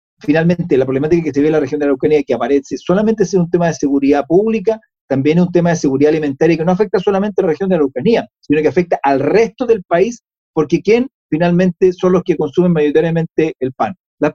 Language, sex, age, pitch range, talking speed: Spanish, male, 40-59, 140-180 Hz, 225 wpm